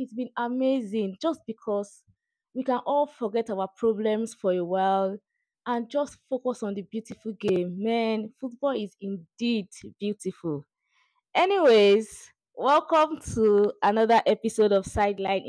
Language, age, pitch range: English, 20-39, 205-260 Hz